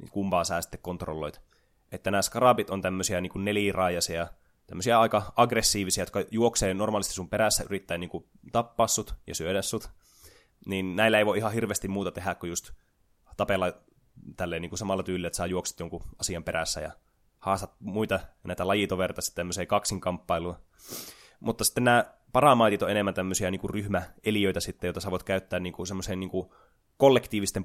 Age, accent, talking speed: 20-39, native, 160 wpm